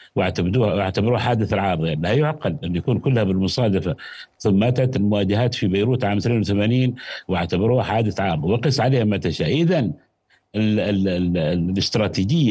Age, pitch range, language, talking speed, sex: 60-79, 95-125 Hz, Arabic, 130 wpm, male